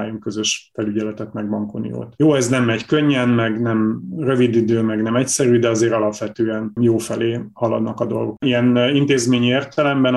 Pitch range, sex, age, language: 110-125 Hz, male, 30-49, Hungarian